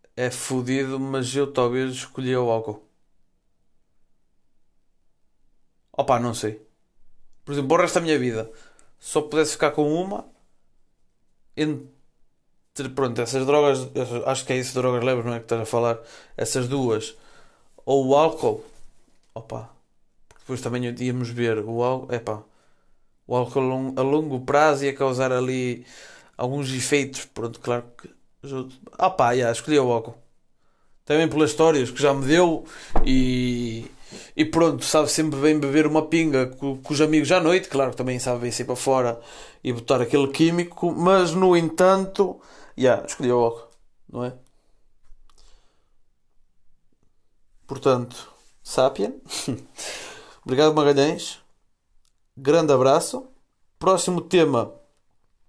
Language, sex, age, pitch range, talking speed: Portuguese, male, 20-39, 120-150 Hz, 135 wpm